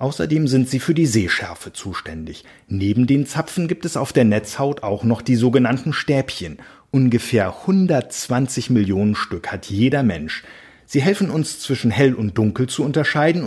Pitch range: 110-145 Hz